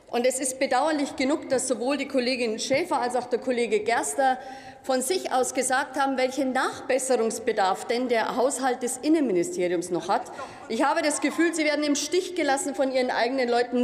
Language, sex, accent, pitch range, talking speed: German, female, German, 245-290 Hz, 180 wpm